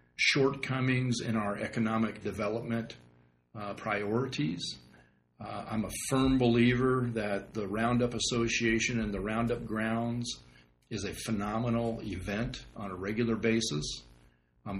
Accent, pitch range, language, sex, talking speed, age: American, 100-115 Hz, English, male, 120 wpm, 40-59